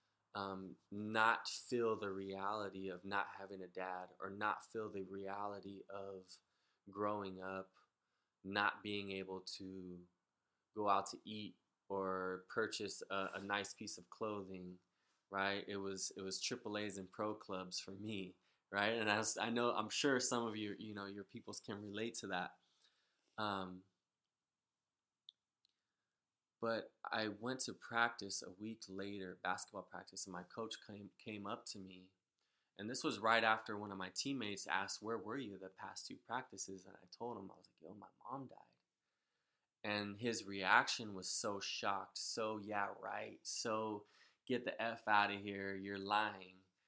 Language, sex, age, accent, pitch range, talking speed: English, male, 20-39, American, 95-105 Hz, 165 wpm